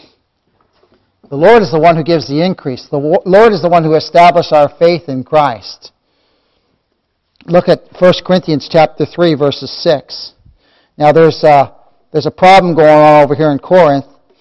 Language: English